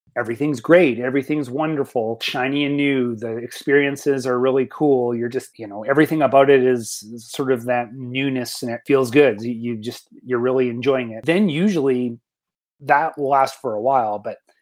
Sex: male